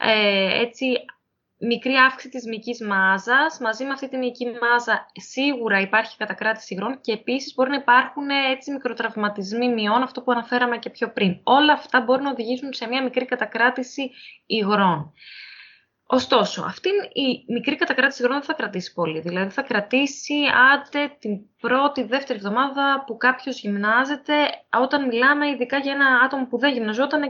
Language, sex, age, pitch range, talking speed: Greek, female, 20-39, 225-280 Hz, 150 wpm